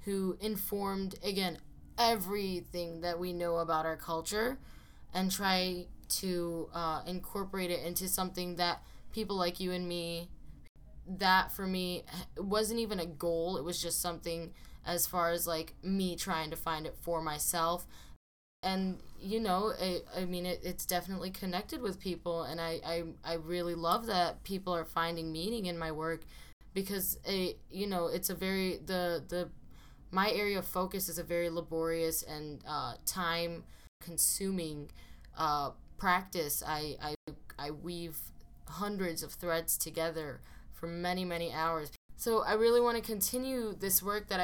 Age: 10-29